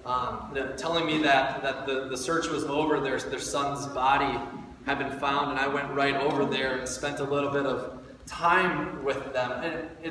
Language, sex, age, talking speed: English, male, 20-39, 200 wpm